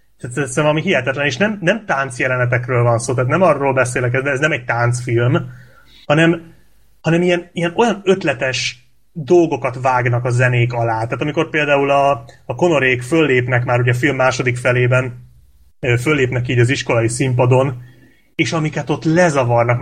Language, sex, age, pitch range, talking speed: Hungarian, male, 30-49, 125-155 Hz, 155 wpm